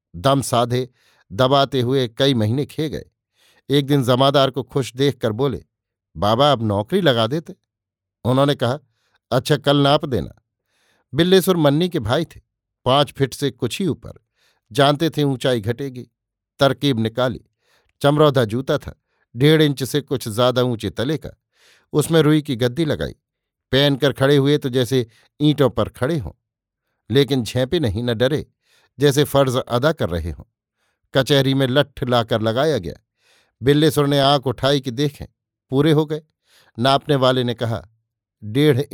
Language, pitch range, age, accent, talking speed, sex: Hindi, 120-145 Hz, 50-69, native, 155 wpm, male